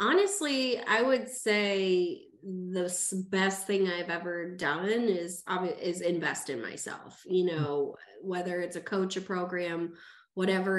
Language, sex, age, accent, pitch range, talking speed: English, female, 20-39, American, 170-200 Hz, 135 wpm